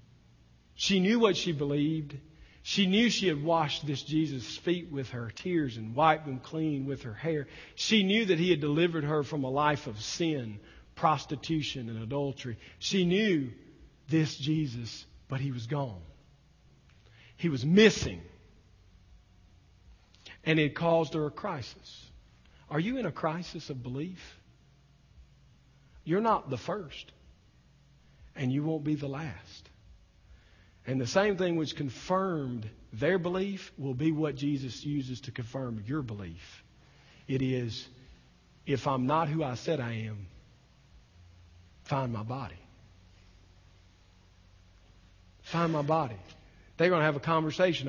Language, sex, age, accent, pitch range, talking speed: English, male, 50-69, American, 95-160 Hz, 140 wpm